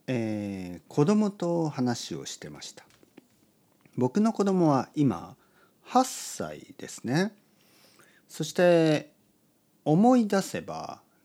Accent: native